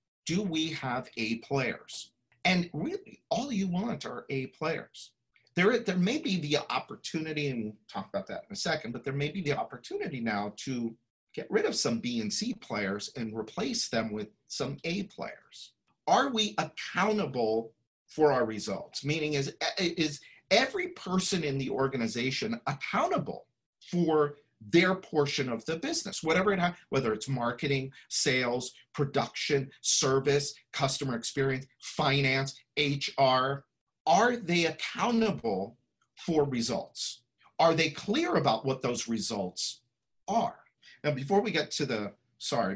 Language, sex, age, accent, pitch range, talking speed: English, male, 50-69, American, 125-175 Hz, 145 wpm